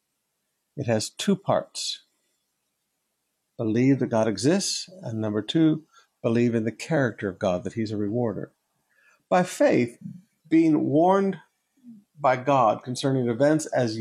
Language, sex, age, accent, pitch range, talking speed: English, male, 50-69, American, 120-180 Hz, 130 wpm